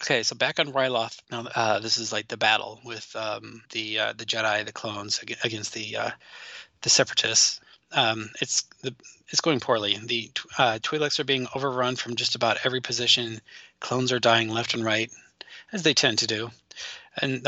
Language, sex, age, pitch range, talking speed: English, male, 20-39, 115-135 Hz, 185 wpm